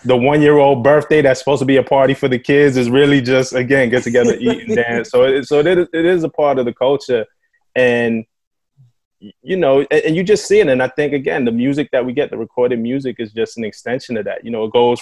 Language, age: English, 20-39